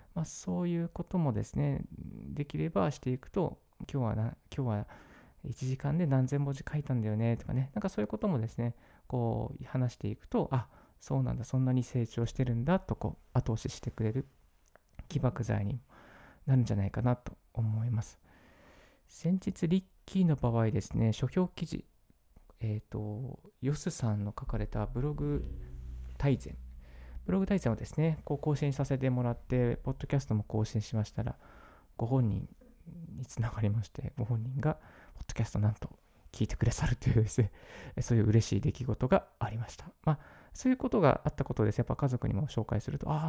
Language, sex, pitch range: Japanese, male, 110-145 Hz